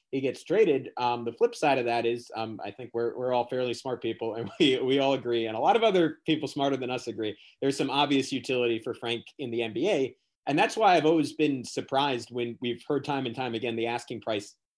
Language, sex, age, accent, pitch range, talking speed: English, male, 30-49, American, 115-140 Hz, 245 wpm